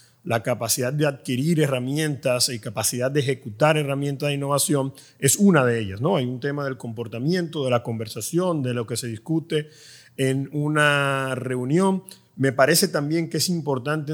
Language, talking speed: Spanish, 165 wpm